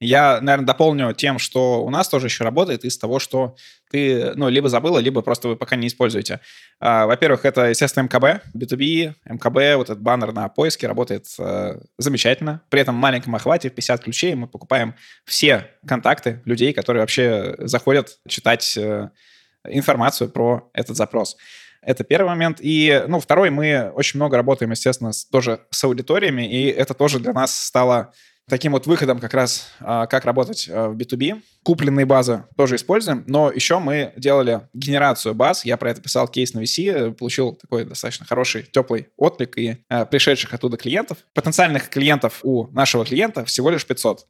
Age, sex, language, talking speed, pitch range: 20-39, male, Russian, 165 wpm, 120-140 Hz